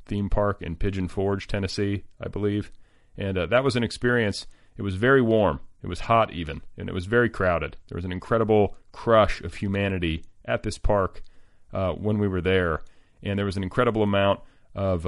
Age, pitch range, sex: 40-59, 90-105 Hz, male